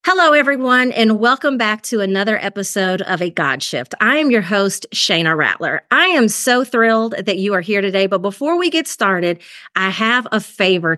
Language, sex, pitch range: English, female, 185-235 Hz